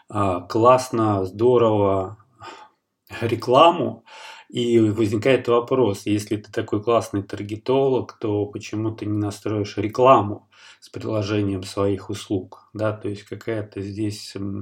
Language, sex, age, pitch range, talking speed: Russian, male, 20-39, 105-120 Hz, 105 wpm